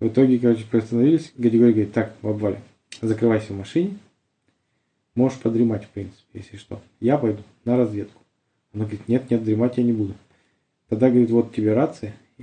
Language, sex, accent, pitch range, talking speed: Russian, male, native, 110-125 Hz, 170 wpm